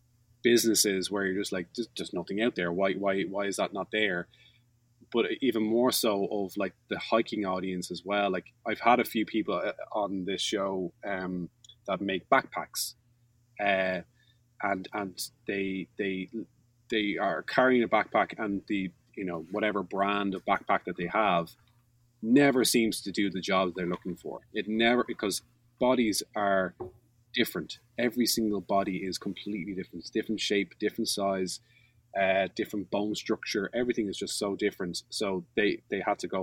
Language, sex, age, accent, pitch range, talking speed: English, male, 20-39, Irish, 95-120 Hz, 170 wpm